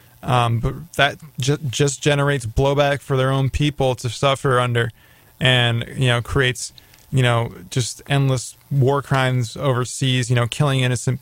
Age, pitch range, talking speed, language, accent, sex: 20-39, 125-145 Hz, 150 wpm, English, American, male